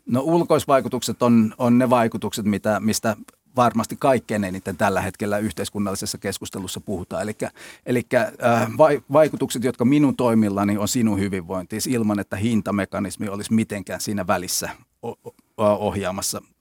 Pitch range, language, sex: 105-130 Hz, Finnish, male